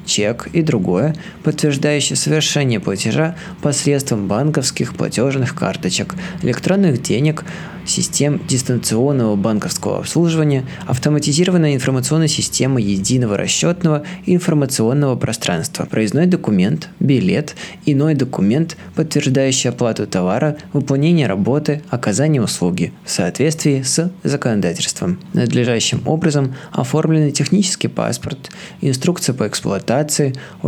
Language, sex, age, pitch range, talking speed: Russian, male, 20-39, 125-160 Hz, 95 wpm